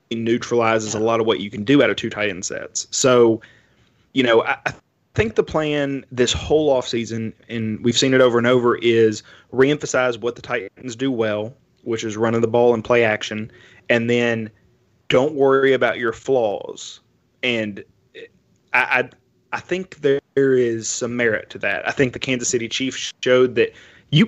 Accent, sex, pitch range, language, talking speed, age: American, male, 115-125 Hz, English, 185 wpm, 20-39